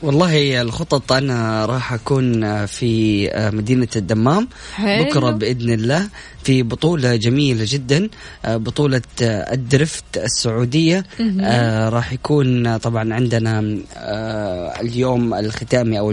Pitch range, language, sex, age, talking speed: 115-145 Hz, Arabic, female, 20-39, 95 wpm